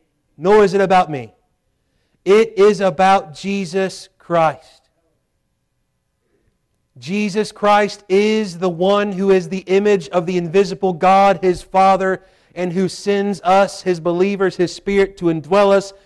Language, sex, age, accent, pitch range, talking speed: English, male, 40-59, American, 170-200 Hz, 135 wpm